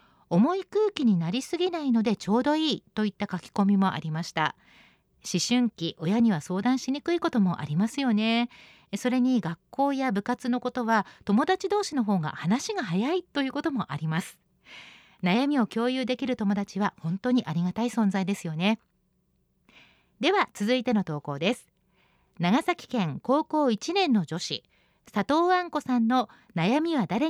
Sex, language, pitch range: female, Japanese, 190-275 Hz